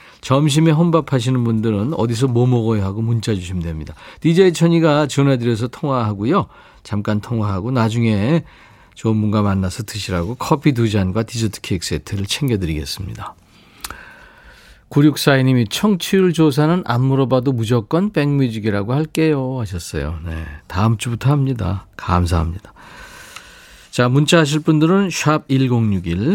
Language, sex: Korean, male